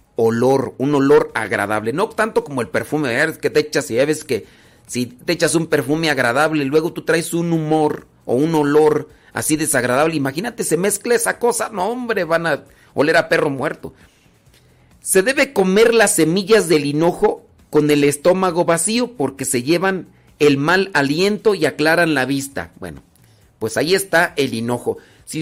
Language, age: Spanish, 40-59